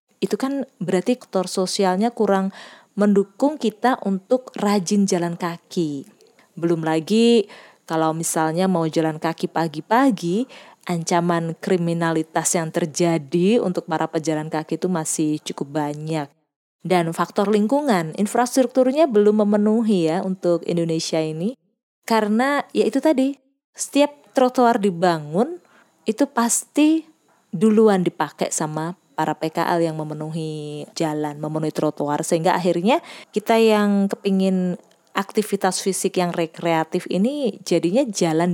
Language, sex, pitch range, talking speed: Indonesian, female, 165-220 Hz, 115 wpm